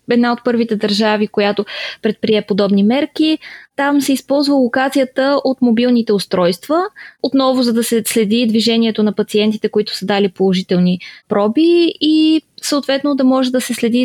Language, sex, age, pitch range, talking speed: Bulgarian, female, 20-39, 220-260 Hz, 150 wpm